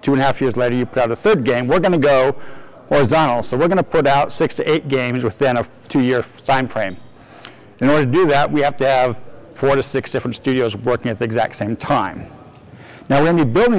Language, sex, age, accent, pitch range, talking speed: English, male, 50-69, American, 125-155 Hz, 245 wpm